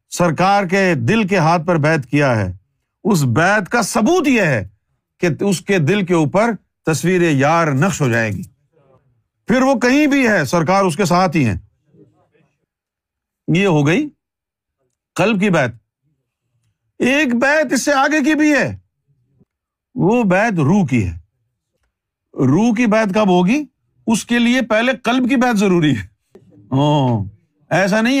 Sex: male